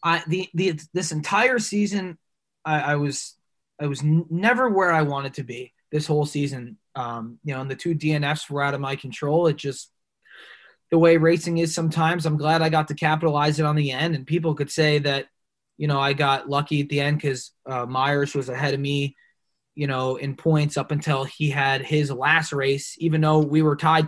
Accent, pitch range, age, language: American, 140-165 Hz, 20-39, English